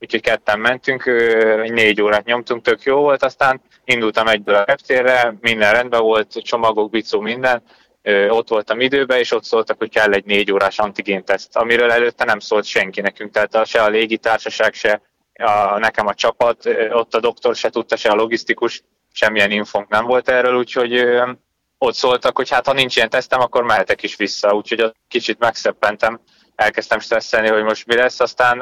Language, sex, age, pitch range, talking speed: Hungarian, male, 20-39, 105-120 Hz, 175 wpm